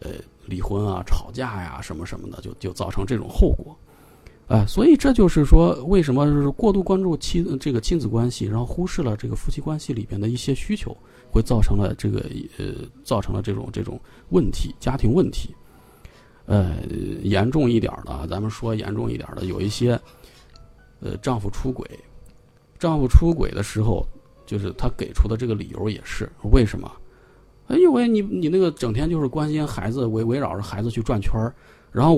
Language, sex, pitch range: Chinese, male, 105-150 Hz